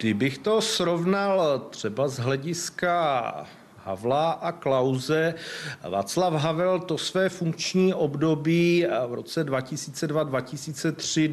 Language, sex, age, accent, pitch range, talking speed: Czech, male, 40-59, native, 125-155 Hz, 95 wpm